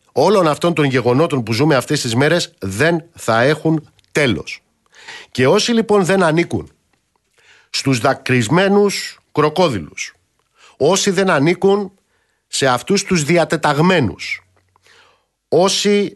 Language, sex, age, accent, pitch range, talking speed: Greek, male, 50-69, native, 120-190 Hz, 110 wpm